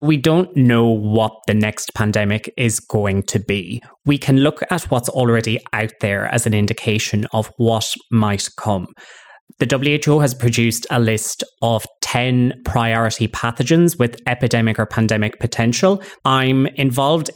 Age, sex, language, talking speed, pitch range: 20-39, male, English, 150 wpm, 105-125 Hz